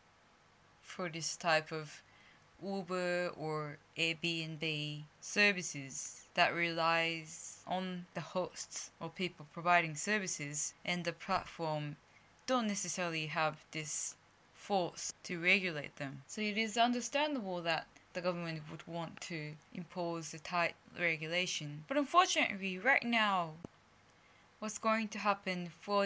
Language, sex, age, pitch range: Japanese, female, 10-29, 155-195 Hz